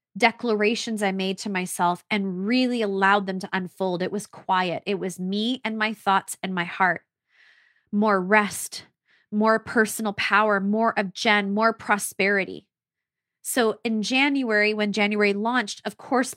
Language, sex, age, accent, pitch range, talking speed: English, female, 20-39, American, 210-265 Hz, 150 wpm